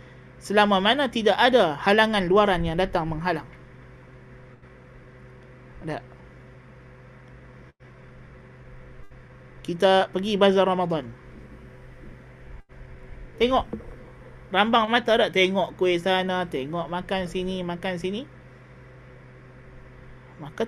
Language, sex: Malay, male